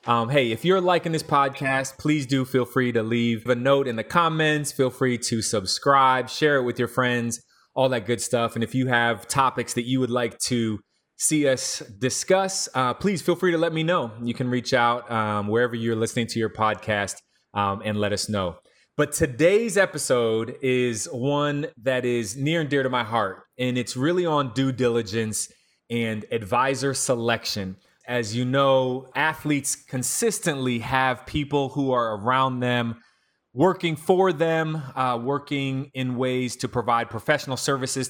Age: 20-39